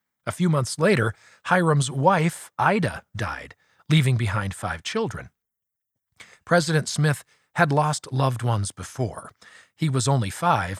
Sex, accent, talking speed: male, American, 130 wpm